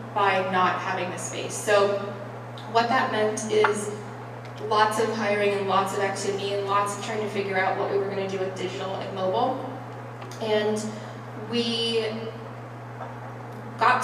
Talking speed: 155 wpm